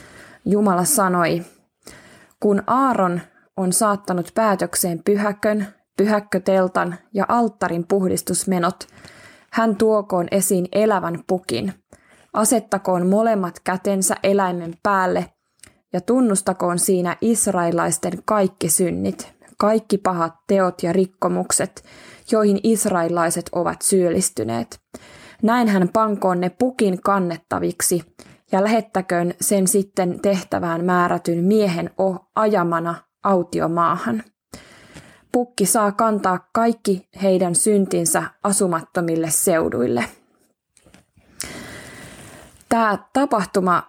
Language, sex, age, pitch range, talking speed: Finnish, female, 20-39, 180-210 Hz, 85 wpm